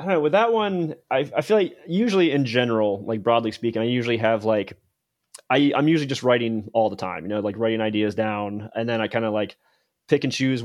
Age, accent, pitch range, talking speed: 30-49, American, 110-125 Hz, 240 wpm